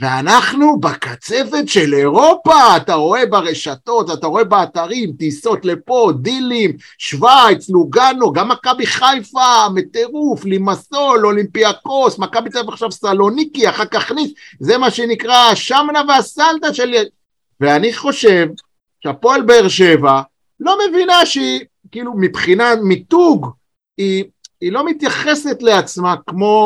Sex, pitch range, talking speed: male, 170-245 Hz, 115 wpm